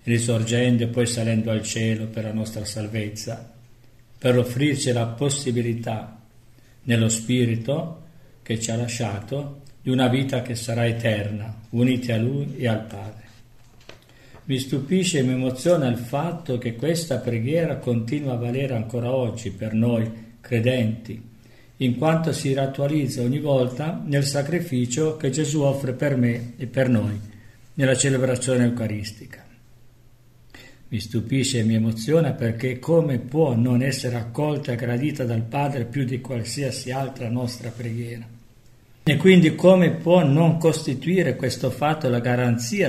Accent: native